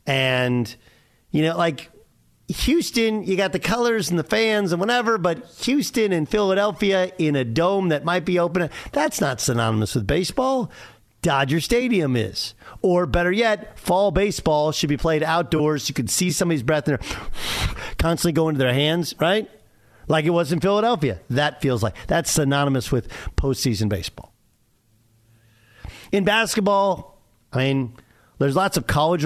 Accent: American